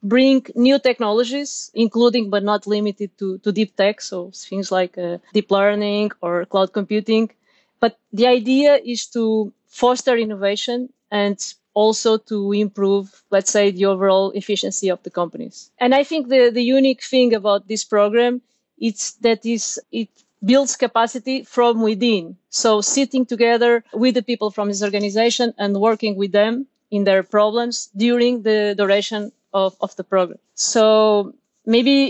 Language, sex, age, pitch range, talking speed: English, female, 30-49, 205-235 Hz, 155 wpm